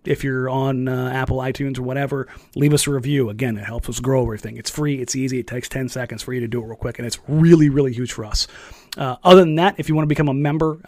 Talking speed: 280 wpm